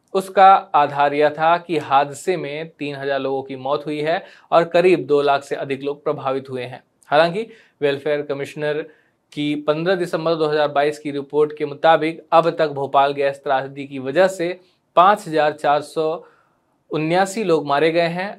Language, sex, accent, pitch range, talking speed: Hindi, male, native, 145-175 Hz, 150 wpm